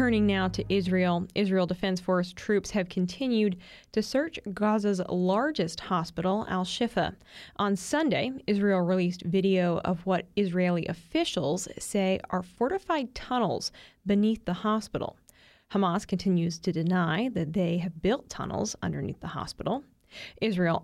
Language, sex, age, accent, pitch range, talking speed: English, female, 20-39, American, 180-210 Hz, 130 wpm